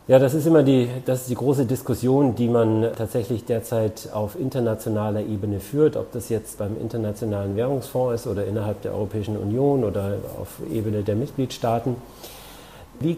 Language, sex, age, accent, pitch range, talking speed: German, male, 50-69, German, 110-135 Hz, 165 wpm